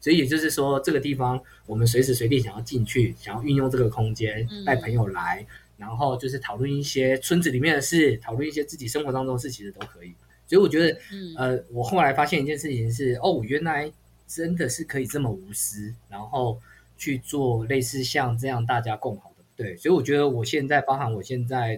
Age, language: 20-39, Chinese